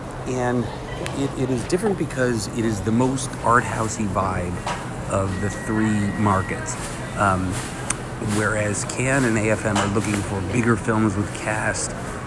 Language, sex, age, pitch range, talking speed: English, male, 30-49, 100-120 Hz, 140 wpm